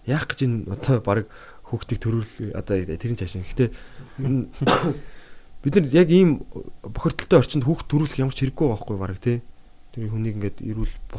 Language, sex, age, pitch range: Korean, male, 20-39, 95-125 Hz